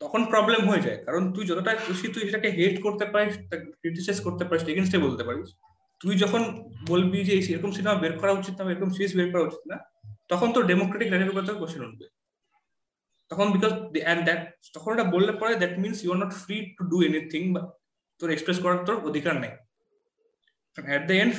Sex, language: male, Bengali